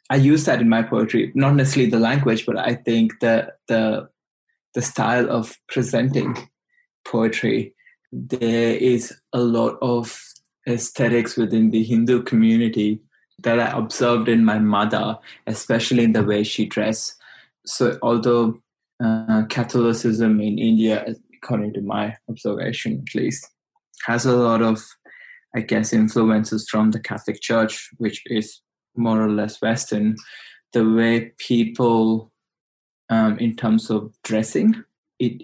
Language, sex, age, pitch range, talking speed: English, male, 20-39, 110-125 Hz, 135 wpm